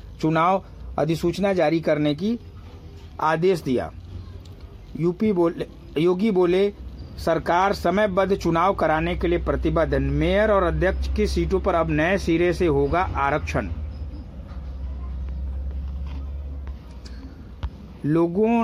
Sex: male